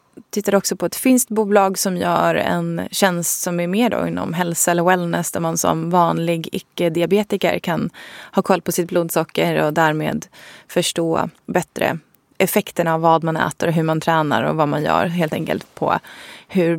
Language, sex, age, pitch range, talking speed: Swedish, female, 20-39, 175-210 Hz, 175 wpm